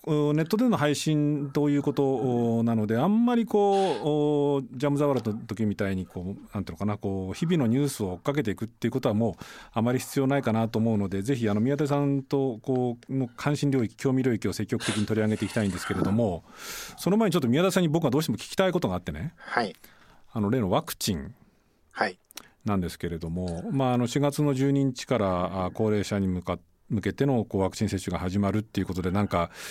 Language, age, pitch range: Japanese, 40-59, 95-140 Hz